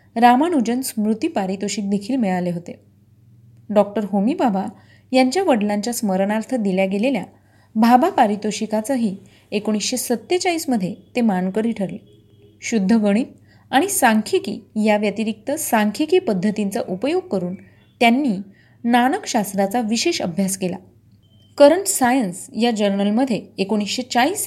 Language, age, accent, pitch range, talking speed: Marathi, 30-49, native, 195-255 Hz, 100 wpm